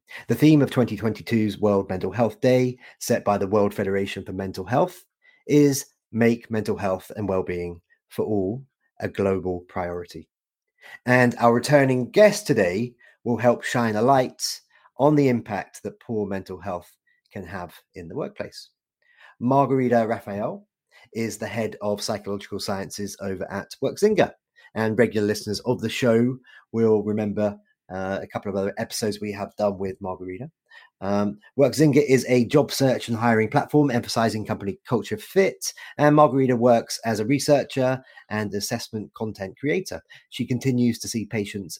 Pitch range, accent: 100-125 Hz, British